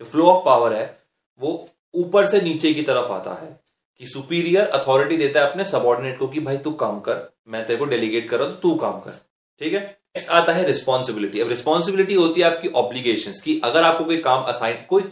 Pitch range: 130-180 Hz